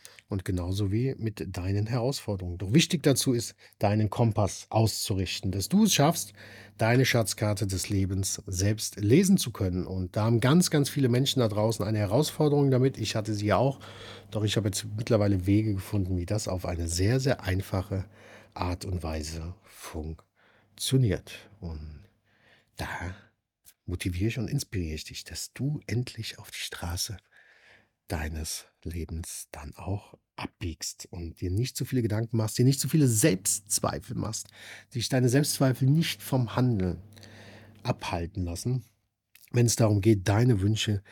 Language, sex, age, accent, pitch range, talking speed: German, male, 50-69, German, 95-125 Hz, 160 wpm